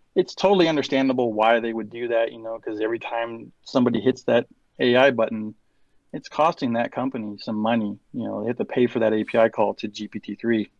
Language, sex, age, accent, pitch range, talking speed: English, male, 30-49, American, 110-125 Hz, 205 wpm